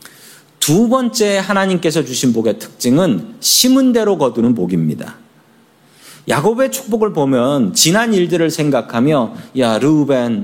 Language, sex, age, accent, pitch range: Korean, male, 40-59, native, 155-225 Hz